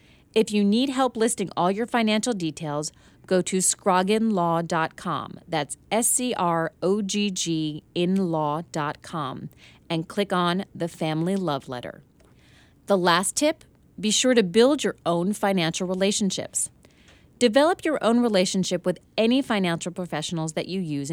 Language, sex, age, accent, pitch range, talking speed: English, female, 30-49, American, 165-215 Hz, 145 wpm